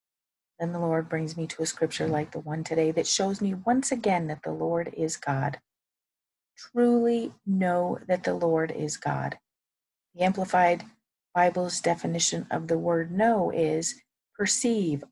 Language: English